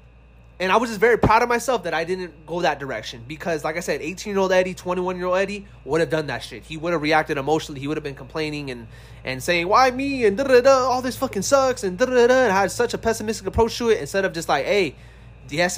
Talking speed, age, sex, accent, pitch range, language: 245 wpm, 20-39, male, American, 130-180 Hz, English